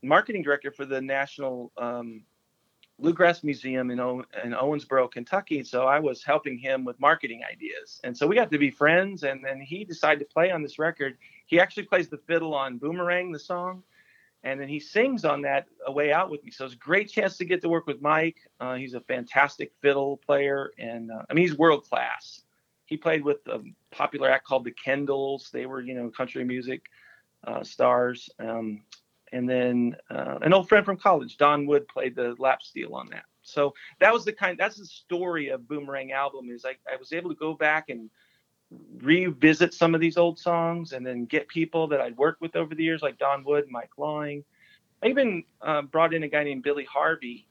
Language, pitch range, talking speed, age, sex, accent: English, 130-165 Hz, 210 wpm, 40-59, male, American